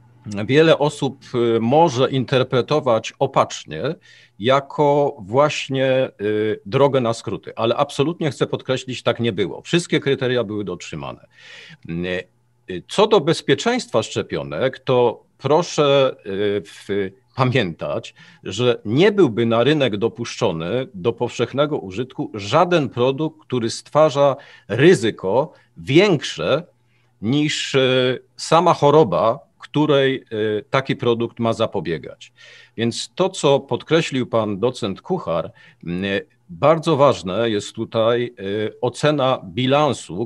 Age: 50-69